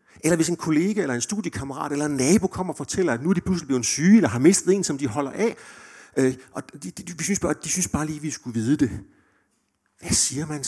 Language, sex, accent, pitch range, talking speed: Danish, male, native, 125-180 Hz, 270 wpm